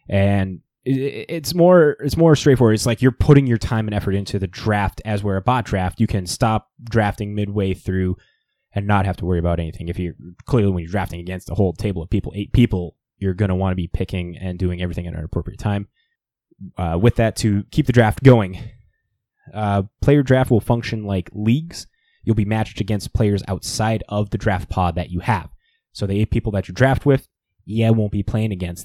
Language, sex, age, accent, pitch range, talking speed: English, male, 20-39, American, 95-115 Hz, 215 wpm